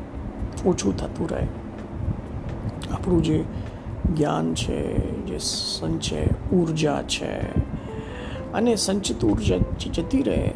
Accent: native